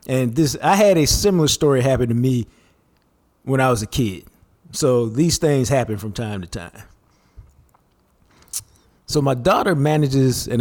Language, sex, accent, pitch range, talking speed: English, male, American, 105-135 Hz, 160 wpm